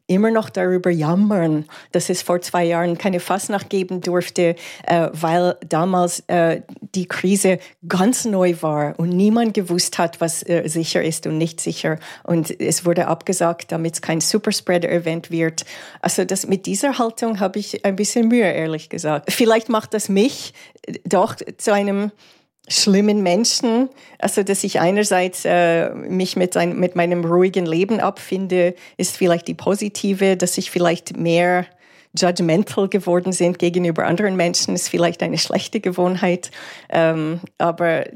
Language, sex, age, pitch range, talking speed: German, female, 40-59, 170-195 Hz, 150 wpm